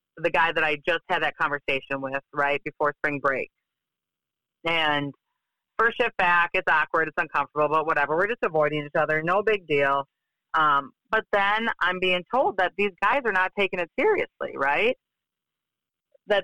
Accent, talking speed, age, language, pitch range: American, 170 wpm, 40-59, English, 160-235 Hz